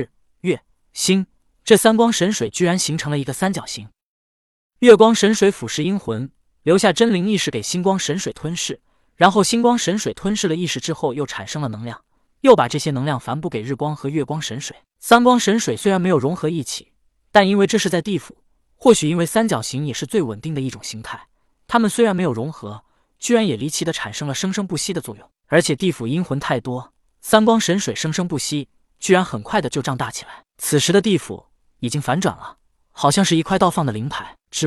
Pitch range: 140-195 Hz